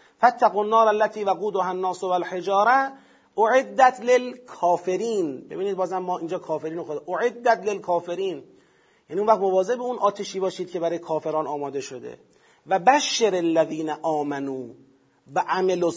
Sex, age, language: male, 40-59, Persian